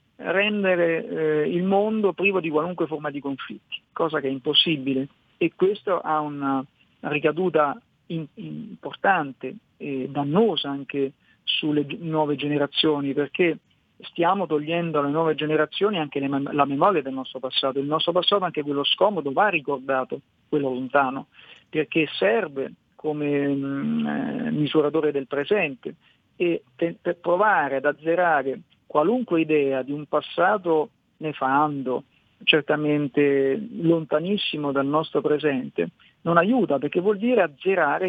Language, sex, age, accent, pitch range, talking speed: Italian, male, 50-69, native, 140-180 Hz, 130 wpm